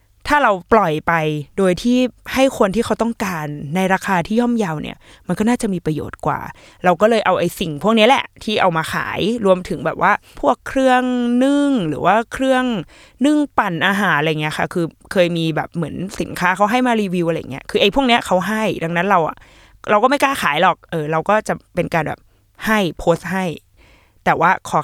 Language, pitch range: Thai, 170-225 Hz